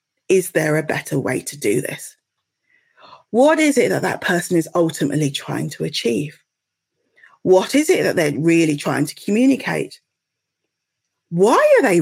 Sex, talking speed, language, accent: female, 155 wpm, English, British